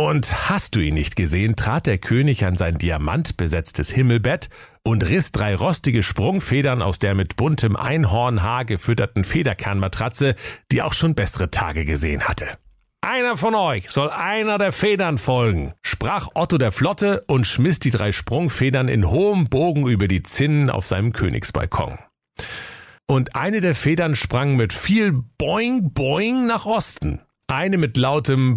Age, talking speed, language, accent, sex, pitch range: 40-59, 150 wpm, German, German, male, 105-150 Hz